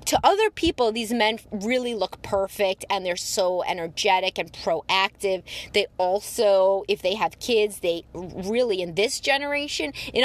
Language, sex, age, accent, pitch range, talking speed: English, female, 30-49, American, 185-230 Hz, 150 wpm